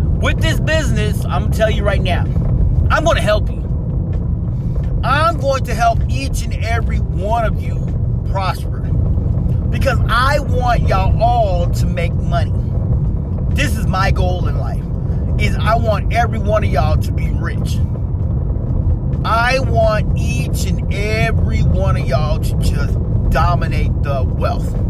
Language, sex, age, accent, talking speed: English, male, 30-49, American, 155 wpm